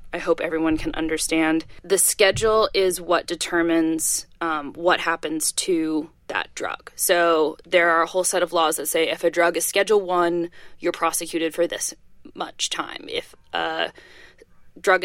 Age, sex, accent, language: 20-39, female, American, English